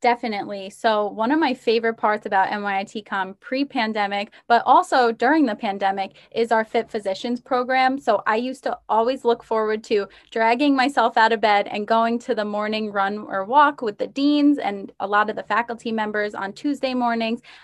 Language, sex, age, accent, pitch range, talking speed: English, female, 20-39, American, 205-245 Hz, 185 wpm